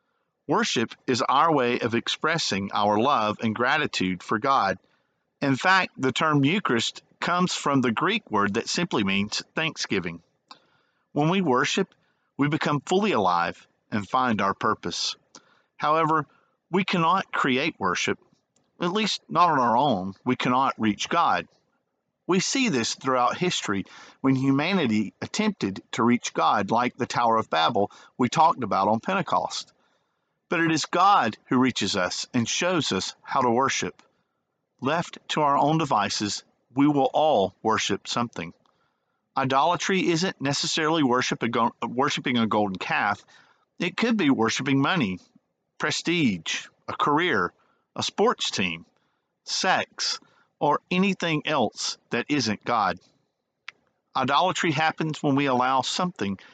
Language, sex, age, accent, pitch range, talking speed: English, male, 50-69, American, 115-165 Hz, 135 wpm